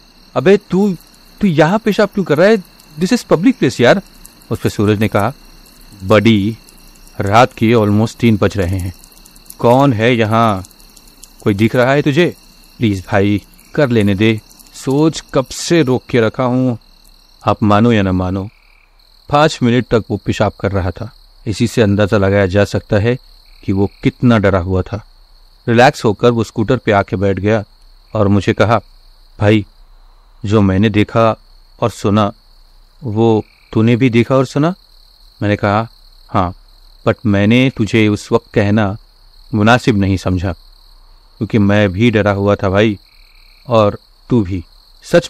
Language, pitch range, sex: Hindi, 100-120 Hz, male